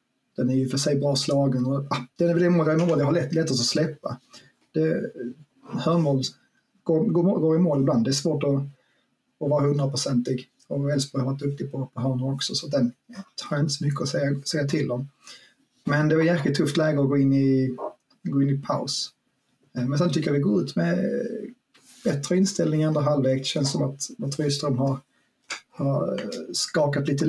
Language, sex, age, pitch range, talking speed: Swedish, male, 30-49, 135-160 Hz, 205 wpm